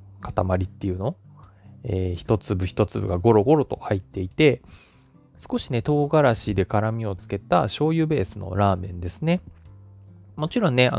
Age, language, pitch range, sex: 20-39, Japanese, 95-130 Hz, male